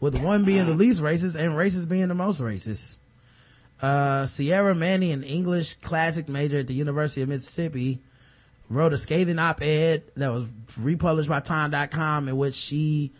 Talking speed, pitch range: 165 wpm, 125-160 Hz